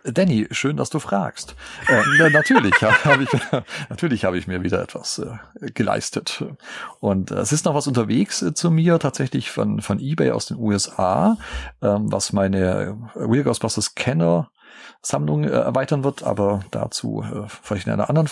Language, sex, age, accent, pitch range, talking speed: German, male, 40-59, German, 105-140 Hz, 160 wpm